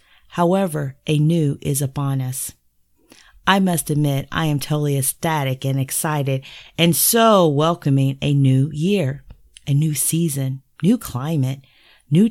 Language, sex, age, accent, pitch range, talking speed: English, female, 40-59, American, 135-155 Hz, 130 wpm